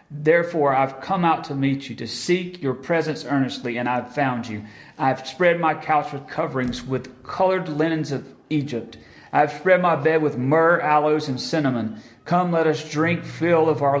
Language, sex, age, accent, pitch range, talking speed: English, male, 40-59, American, 125-160 Hz, 185 wpm